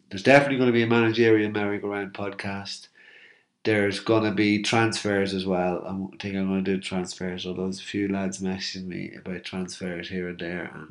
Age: 30-49